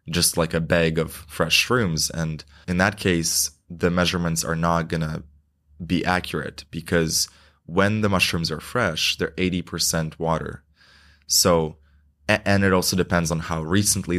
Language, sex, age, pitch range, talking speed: English, male, 20-39, 80-90 Hz, 150 wpm